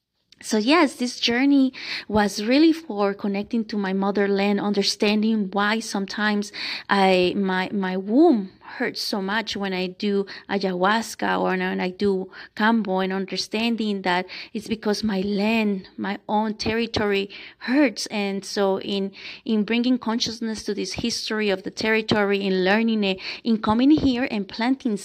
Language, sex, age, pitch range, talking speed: English, female, 20-39, 200-245 Hz, 145 wpm